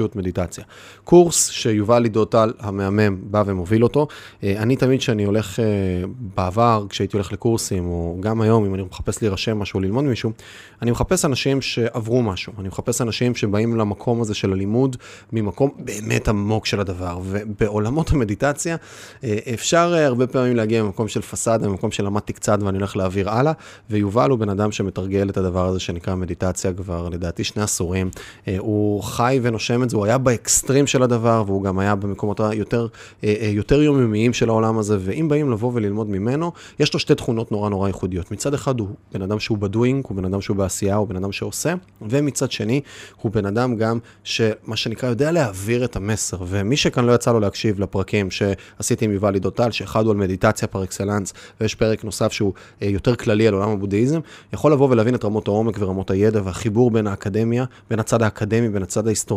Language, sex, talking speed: Hebrew, male, 155 wpm